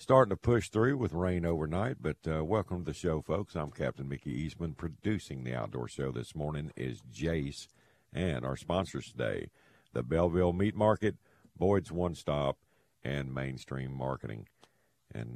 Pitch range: 65-85 Hz